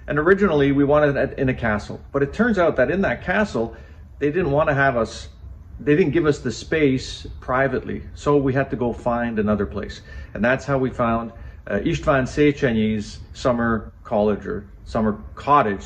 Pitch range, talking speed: 105-145 Hz, 190 wpm